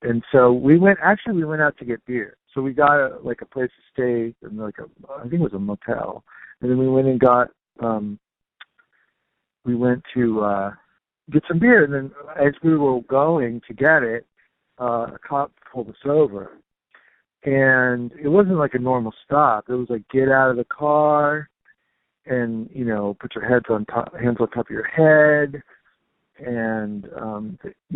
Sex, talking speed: male, 190 wpm